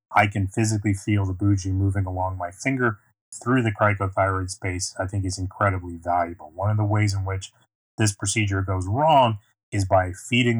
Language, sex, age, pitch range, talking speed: English, male, 30-49, 95-110 Hz, 180 wpm